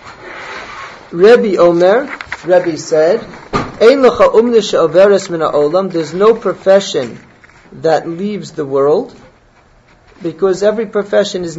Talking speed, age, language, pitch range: 80 wpm, 40-59, English, 155-195 Hz